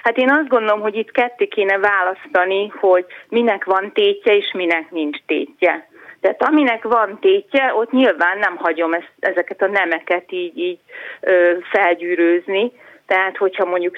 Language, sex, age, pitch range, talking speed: Hungarian, female, 40-59, 180-260 Hz, 150 wpm